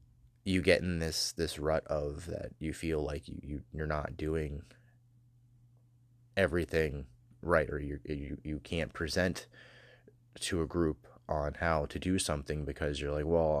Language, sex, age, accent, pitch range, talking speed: English, male, 30-49, American, 75-95 Hz, 160 wpm